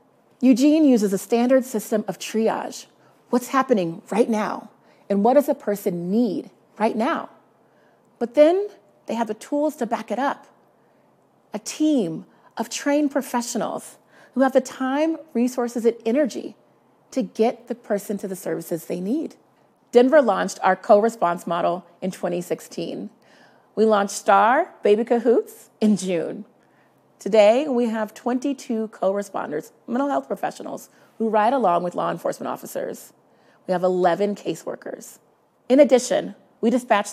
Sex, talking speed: female, 140 wpm